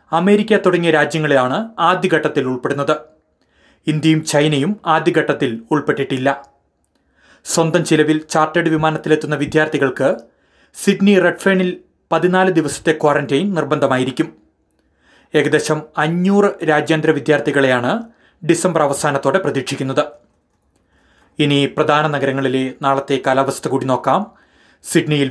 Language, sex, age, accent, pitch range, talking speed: Malayalam, male, 30-49, native, 135-155 Hz, 85 wpm